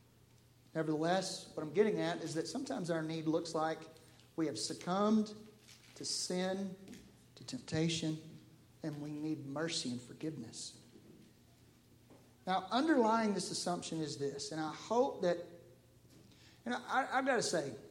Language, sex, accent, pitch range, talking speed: English, male, American, 140-205 Hz, 130 wpm